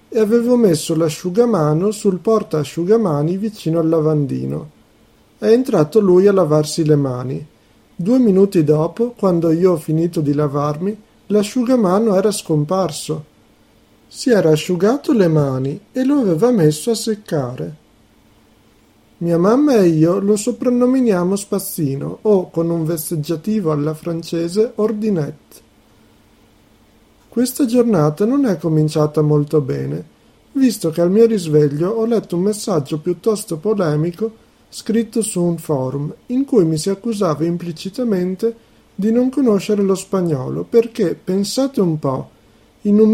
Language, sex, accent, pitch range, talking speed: Italian, male, native, 155-220 Hz, 130 wpm